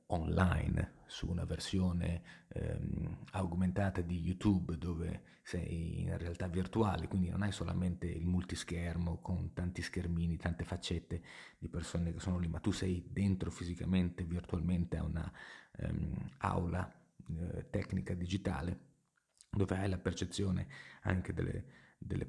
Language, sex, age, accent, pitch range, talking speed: Italian, male, 30-49, native, 90-100 Hz, 130 wpm